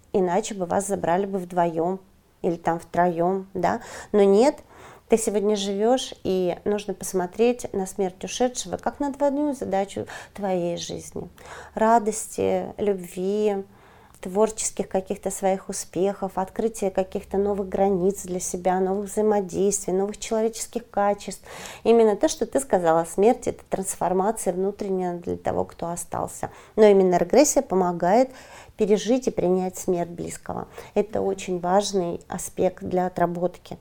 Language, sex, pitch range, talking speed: Russian, female, 180-215 Hz, 130 wpm